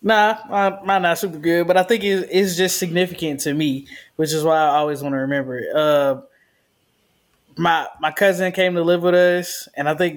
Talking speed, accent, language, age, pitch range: 200 wpm, American, English, 20-39, 140-170 Hz